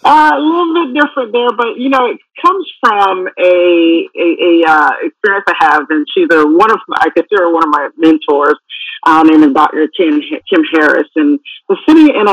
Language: English